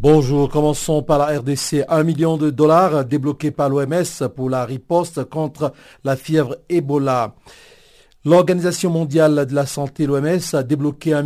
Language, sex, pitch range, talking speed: French, male, 135-165 Hz, 150 wpm